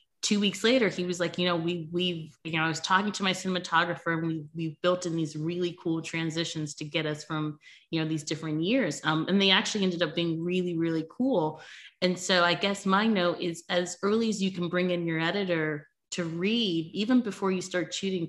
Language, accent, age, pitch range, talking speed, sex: English, American, 20-39, 160-200 Hz, 225 wpm, female